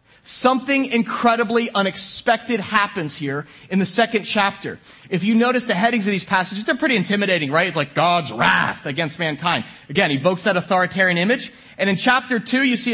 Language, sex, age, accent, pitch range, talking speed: English, male, 30-49, American, 185-245 Hz, 180 wpm